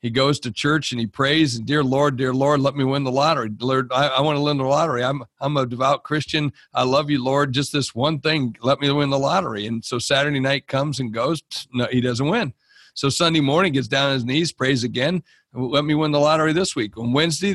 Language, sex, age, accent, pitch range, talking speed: English, male, 60-79, American, 130-155 Hz, 245 wpm